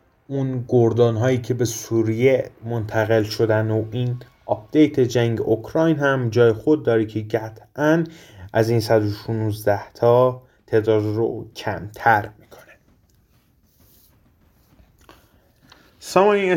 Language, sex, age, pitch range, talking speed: Persian, male, 30-49, 110-135 Hz, 100 wpm